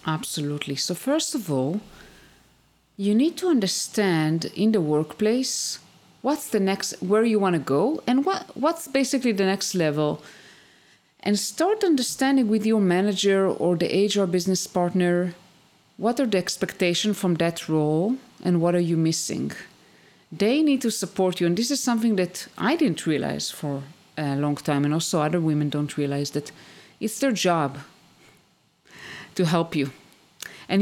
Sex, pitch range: female, 155-215 Hz